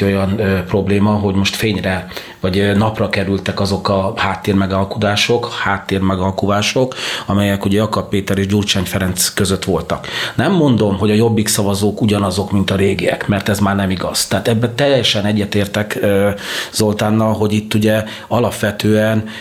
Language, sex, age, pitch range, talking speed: Hungarian, male, 40-59, 100-110 Hz, 140 wpm